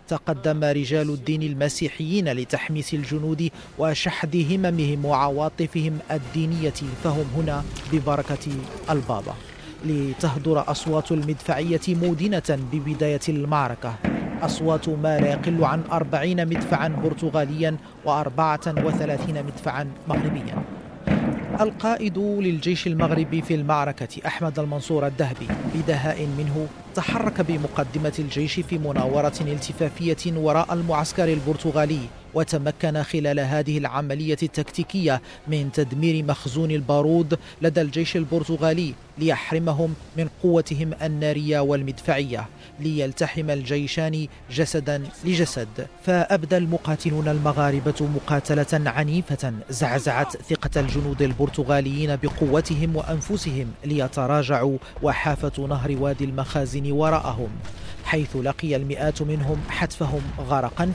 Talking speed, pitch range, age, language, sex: 95 wpm, 145-160 Hz, 40-59, Arabic, male